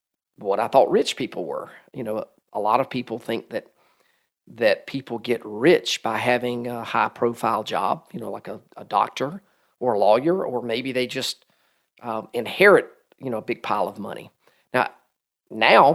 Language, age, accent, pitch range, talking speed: English, 40-59, American, 120-140 Hz, 175 wpm